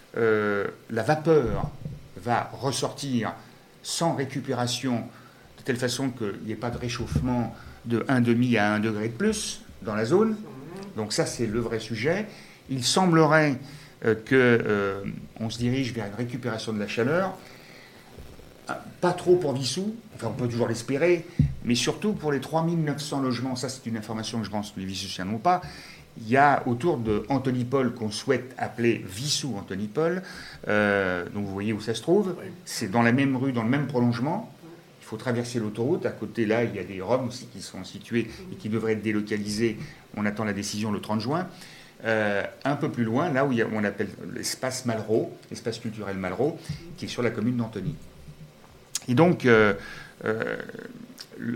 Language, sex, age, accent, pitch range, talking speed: French, male, 60-79, French, 110-145 Hz, 180 wpm